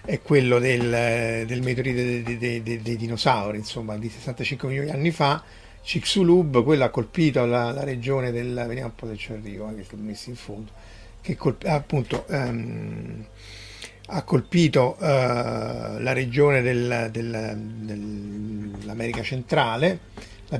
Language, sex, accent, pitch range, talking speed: Italian, male, native, 115-145 Hz, 145 wpm